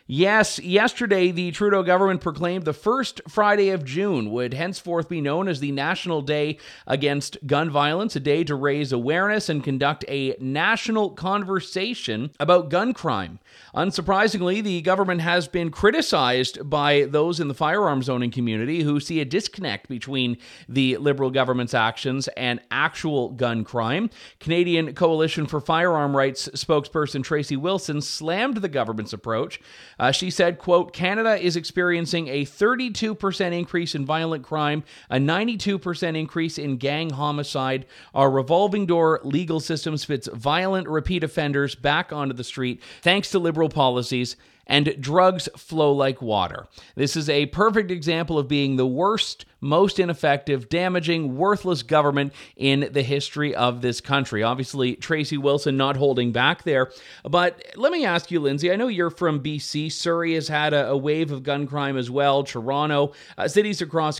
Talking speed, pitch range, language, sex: 155 wpm, 140-180 Hz, English, male